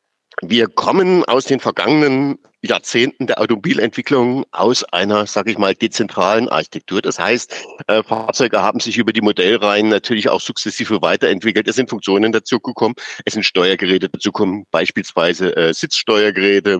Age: 50-69